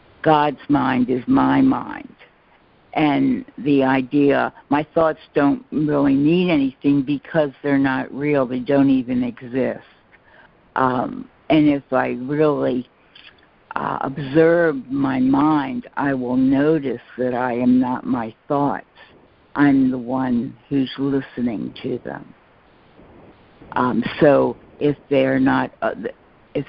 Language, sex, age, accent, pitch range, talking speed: English, female, 60-79, American, 130-155 Hz, 110 wpm